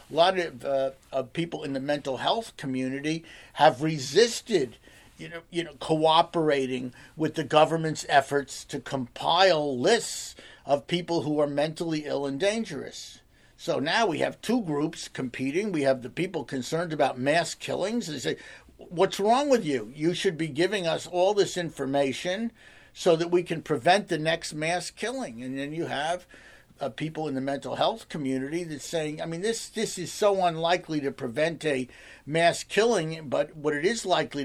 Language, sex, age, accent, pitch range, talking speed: English, male, 50-69, American, 140-175 Hz, 170 wpm